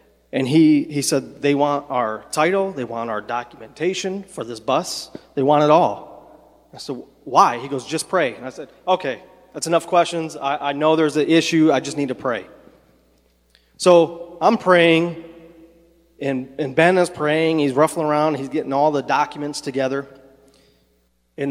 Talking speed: 175 wpm